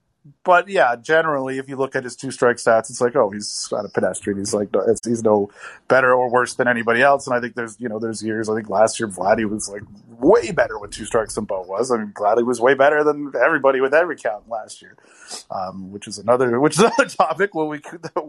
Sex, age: male, 30-49